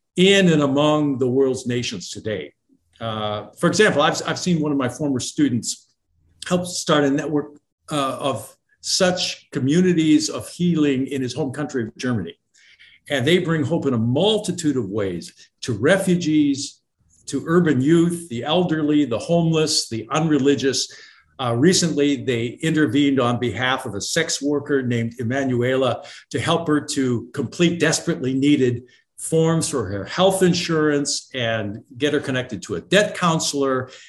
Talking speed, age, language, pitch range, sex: 150 wpm, 50-69, English, 130-170 Hz, male